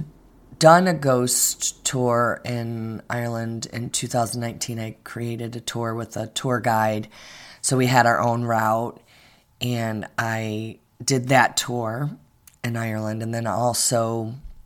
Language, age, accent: English, 30-49, American